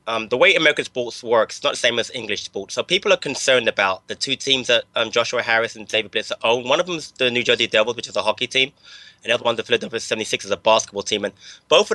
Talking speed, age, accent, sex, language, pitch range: 280 wpm, 20-39, British, male, English, 110-140 Hz